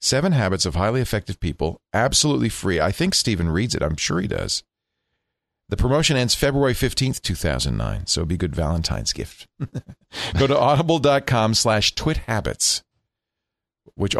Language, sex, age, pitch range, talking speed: English, male, 40-59, 90-130 Hz, 150 wpm